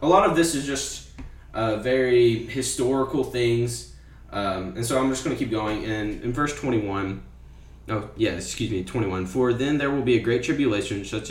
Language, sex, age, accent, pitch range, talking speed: English, male, 10-29, American, 100-125 Hz, 195 wpm